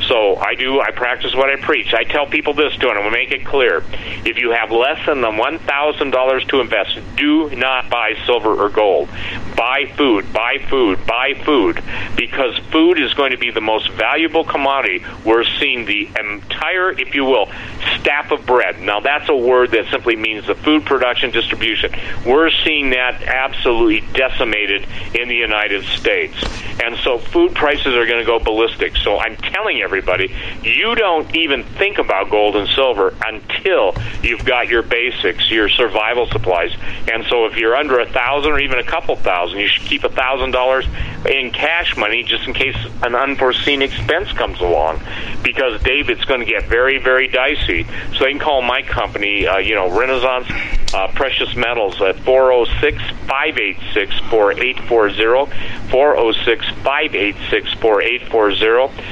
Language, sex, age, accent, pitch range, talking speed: English, male, 50-69, American, 115-150 Hz, 160 wpm